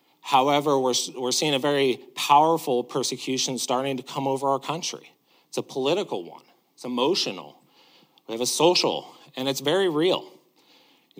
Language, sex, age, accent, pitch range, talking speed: English, male, 40-59, American, 125-150 Hz, 155 wpm